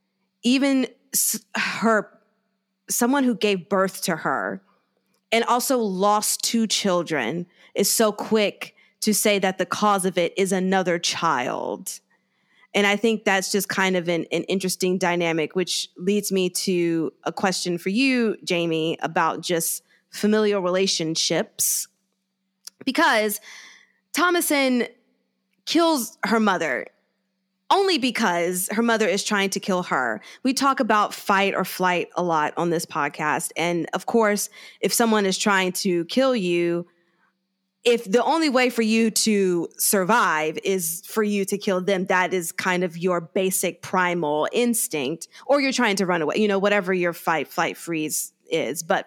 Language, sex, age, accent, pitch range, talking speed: English, female, 20-39, American, 175-220 Hz, 150 wpm